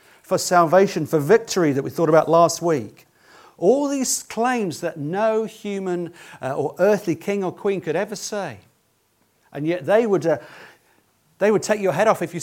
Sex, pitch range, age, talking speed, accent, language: male, 130-190 Hz, 40-59, 175 wpm, British, English